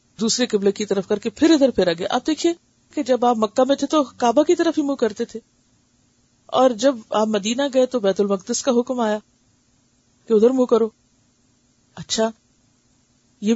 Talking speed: 175 wpm